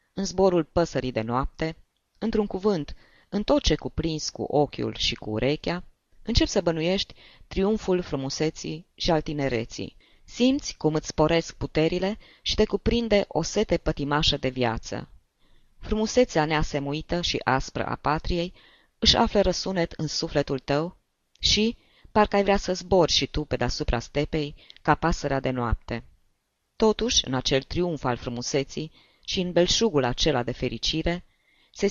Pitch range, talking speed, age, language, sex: 135-190 Hz, 145 wpm, 20-39, Romanian, female